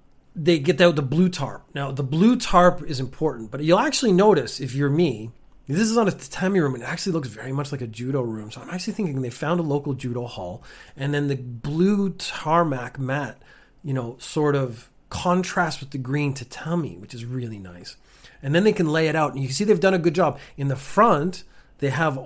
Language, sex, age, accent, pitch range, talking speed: English, male, 30-49, American, 135-175 Hz, 230 wpm